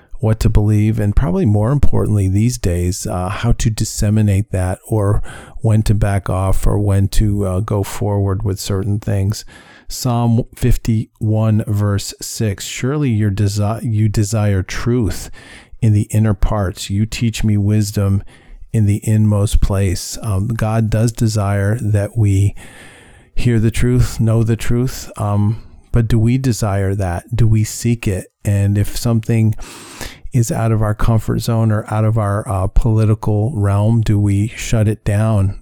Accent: American